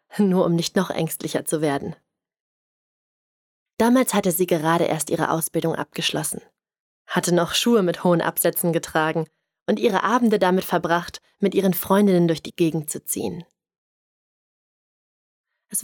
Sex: female